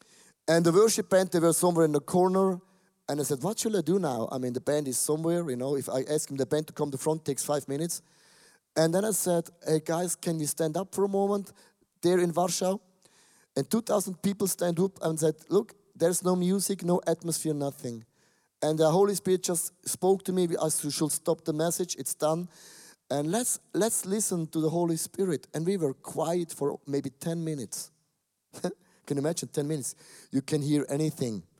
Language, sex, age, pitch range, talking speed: English, male, 30-49, 145-180 Hz, 215 wpm